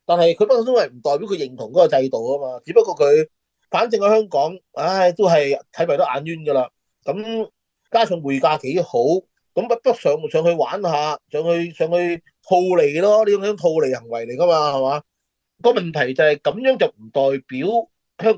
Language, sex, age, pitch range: Chinese, male, 30-49, 140-235 Hz